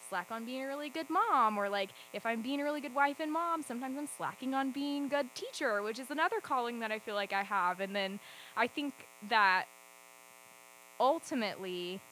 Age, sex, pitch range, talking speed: 20-39, female, 165-210 Hz, 205 wpm